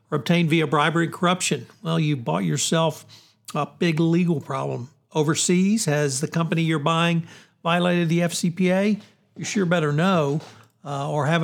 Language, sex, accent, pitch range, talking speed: English, male, American, 145-170 Hz, 150 wpm